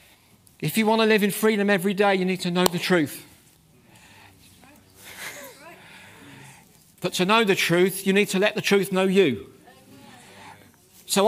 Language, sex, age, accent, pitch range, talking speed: English, male, 50-69, British, 175-220 Hz, 155 wpm